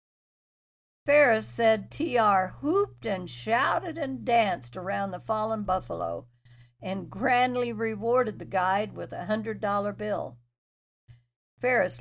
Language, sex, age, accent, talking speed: English, female, 60-79, American, 110 wpm